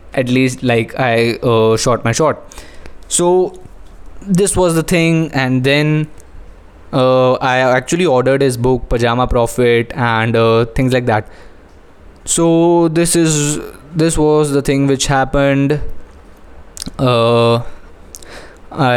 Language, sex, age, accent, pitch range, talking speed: Hindi, male, 20-39, native, 115-140 Hz, 120 wpm